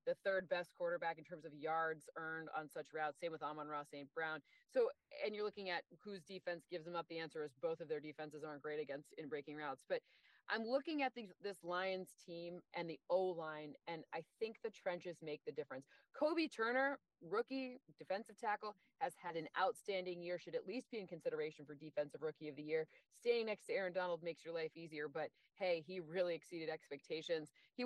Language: English